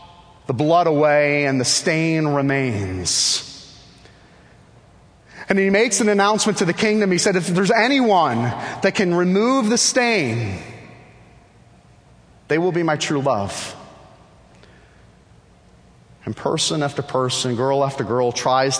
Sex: male